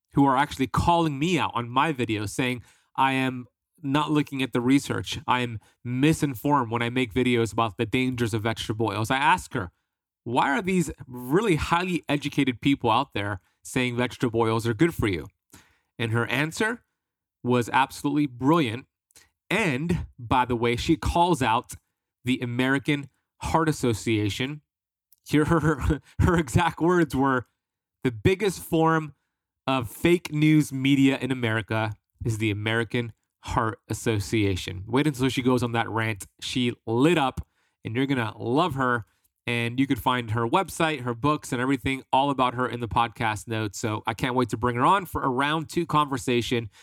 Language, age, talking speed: English, 30-49, 170 wpm